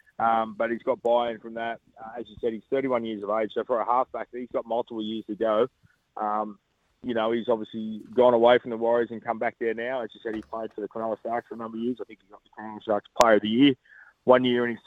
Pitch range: 110-135 Hz